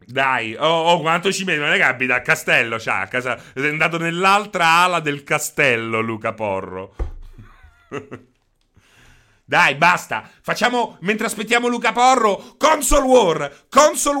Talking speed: 130 wpm